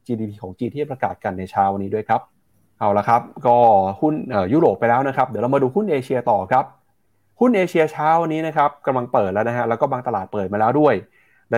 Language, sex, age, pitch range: Thai, male, 20-39, 100-135 Hz